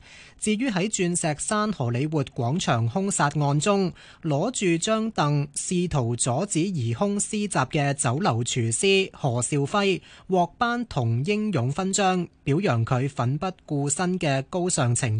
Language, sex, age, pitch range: Chinese, male, 20-39, 130-185 Hz